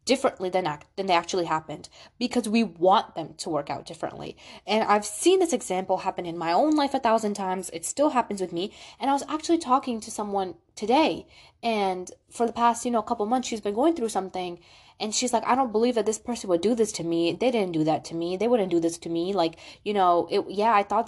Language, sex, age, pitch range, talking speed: English, female, 20-39, 185-260 Hz, 250 wpm